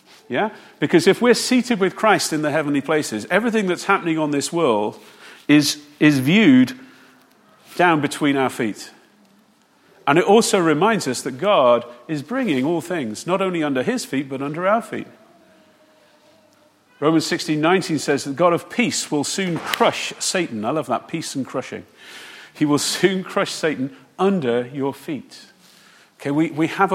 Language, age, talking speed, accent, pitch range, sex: English, 40-59, 165 wpm, British, 130-180 Hz, male